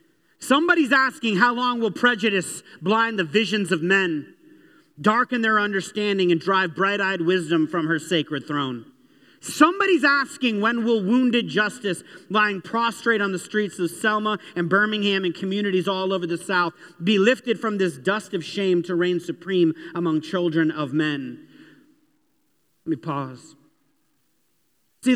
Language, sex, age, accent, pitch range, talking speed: English, male, 40-59, American, 175-235 Hz, 150 wpm